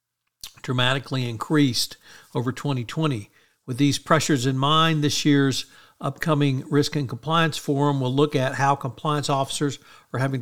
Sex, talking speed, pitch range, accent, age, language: male, 140 wpm, 125-150 Hz, American, 60-79, English